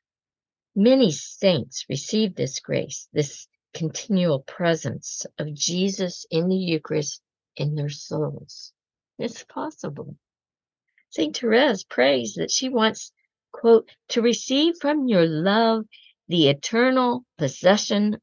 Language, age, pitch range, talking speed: English, 60-79, 150-220 Hz, 110 wpm